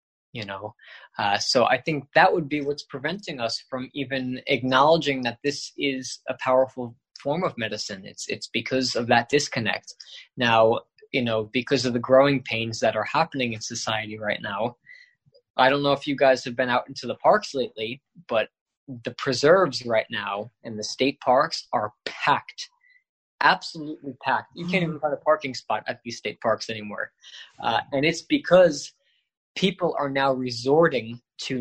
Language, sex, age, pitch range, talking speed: English, male, 20-39, 120-145 Hz, 175 wpm